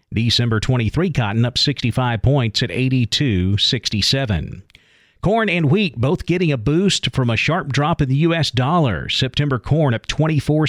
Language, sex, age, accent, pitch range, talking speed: English, male, 50-69, American, 120-150 Hz, 150 wpm